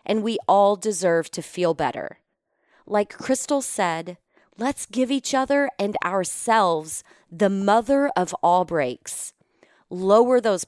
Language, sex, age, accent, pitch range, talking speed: English, female, 30-49, American, 180-245 Hz, 130 wpm